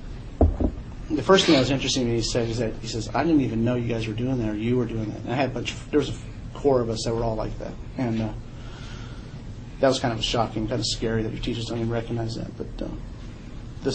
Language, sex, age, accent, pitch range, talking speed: English, male, 40-59, American, 115-135 Hz, 270 wpm